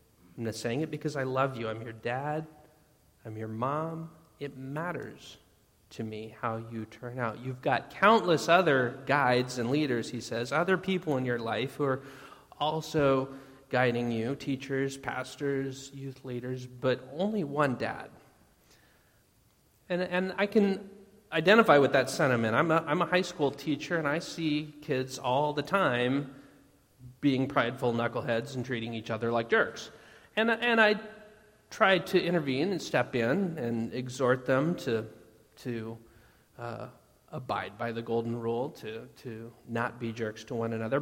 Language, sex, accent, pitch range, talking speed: English, male, American, 115-150 Hz, 160 wpm